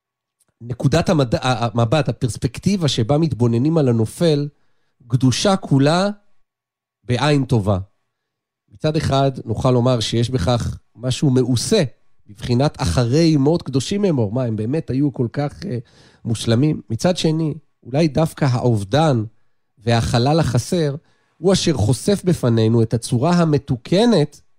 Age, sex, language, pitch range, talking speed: 40-59, male, Hebrew, 125-165 Hz, 115 wpm